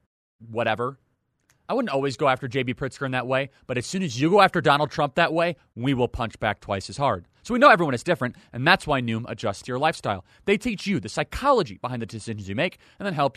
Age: 30-49